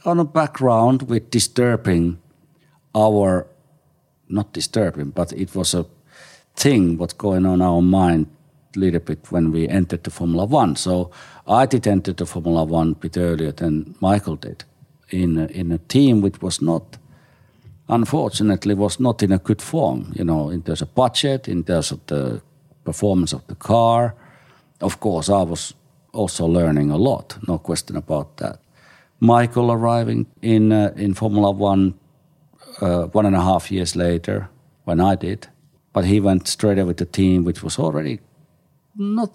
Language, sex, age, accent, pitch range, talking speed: English, male, 50-69, Finnish, 85-115 Hz, 170 wpm